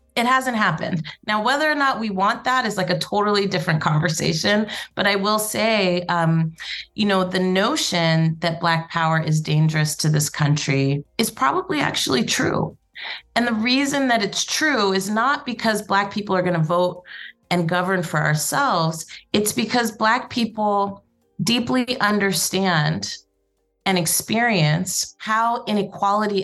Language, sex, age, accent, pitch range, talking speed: English, female, 30-49, American, 170-220 Hz, 150 wpm